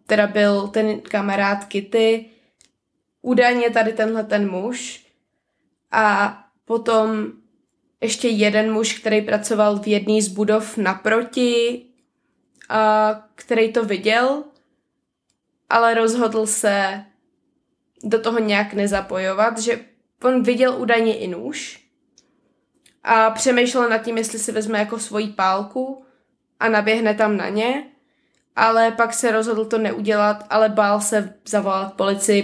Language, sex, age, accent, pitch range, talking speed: Czech, female, 20-39, native, 205-230 Hz, 120 wpm